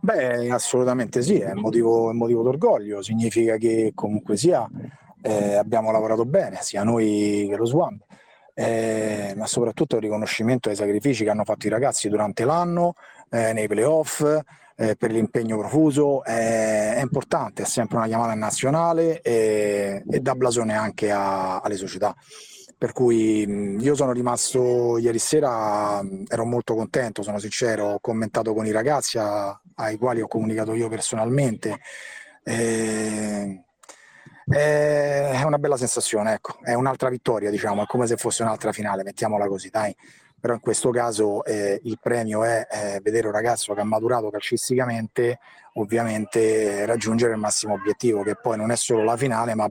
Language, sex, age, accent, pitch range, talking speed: Italian, male, 30-49, native, 105-120 Hz, 155 wpm